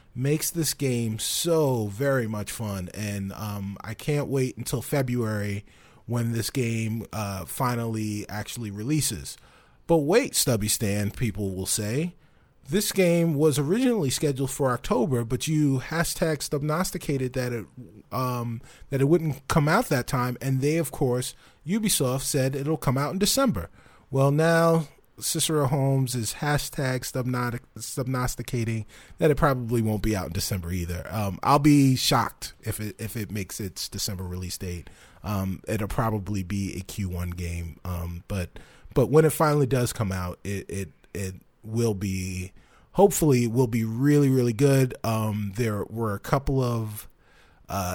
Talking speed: 160 wpm